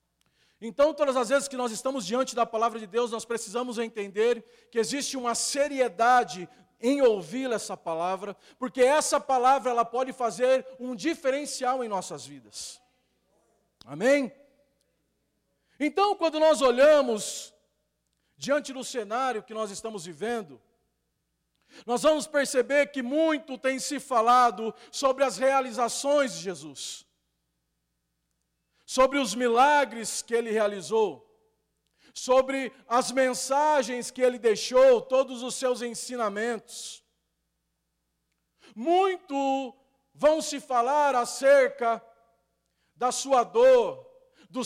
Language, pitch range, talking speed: Portuguese, 220-280 Hz, 115 wpm